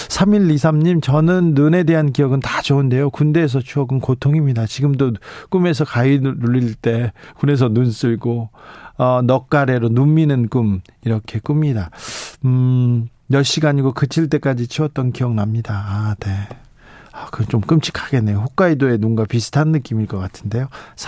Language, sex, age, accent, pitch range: Korean, male, 40-59, native, 120-155 Hz